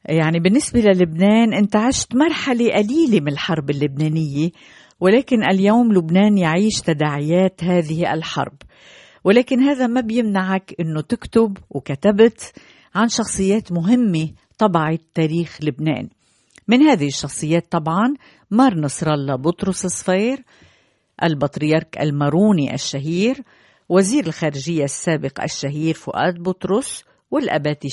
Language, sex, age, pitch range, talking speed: Arabic, female, 50-69, 155-205 Hz, 105 wpm